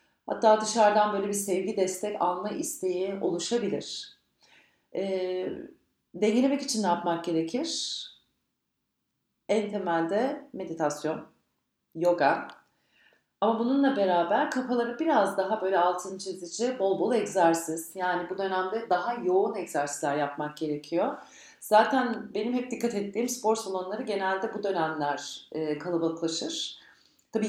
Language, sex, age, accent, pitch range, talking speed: Turkish, female, 40-59, native, 165-215 Hz, 110 wpm